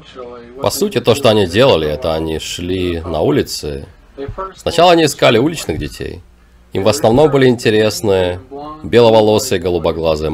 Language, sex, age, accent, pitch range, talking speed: Russian, male, 30-49, native, 85-140 Hz, 135 wpm